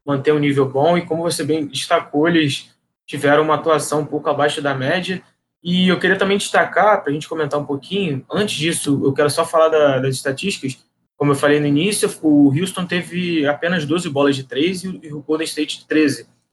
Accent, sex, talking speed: Brazilian, male, 205 wpm